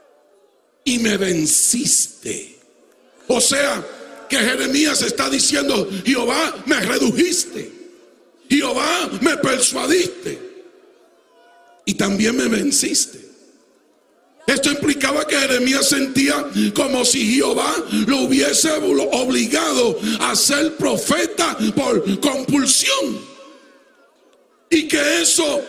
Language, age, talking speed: Spanish, 60-79, 90 wpm